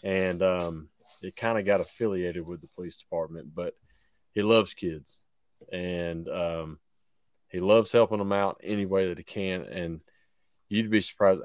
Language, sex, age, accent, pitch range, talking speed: English, male, 30-49, American, 85-105 Hz, 160 wpm